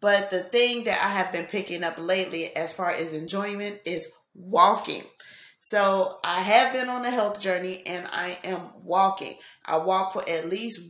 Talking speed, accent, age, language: 180 wpm, American, 30-49, English